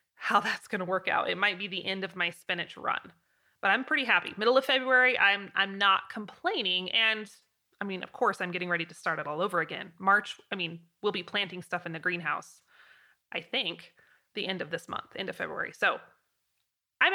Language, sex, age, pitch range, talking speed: English, female, 20-39, 185-240 Hz, 215 wpm